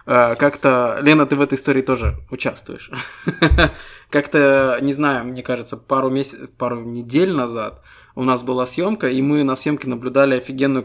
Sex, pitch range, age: male, 125-145 Hz, 20-39